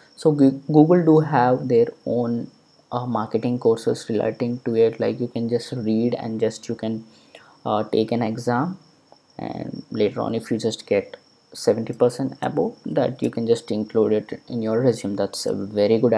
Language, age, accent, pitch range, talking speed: English, 20-39, Indian, 115-145 Hz, 175 wpm